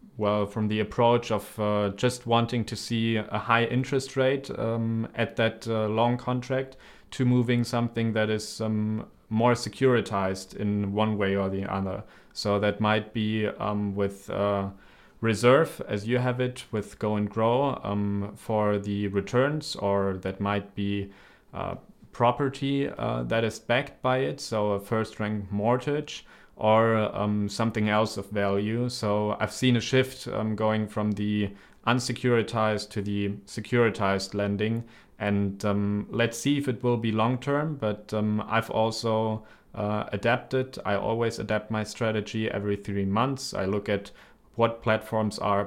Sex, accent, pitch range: male, German, 100-120 Hz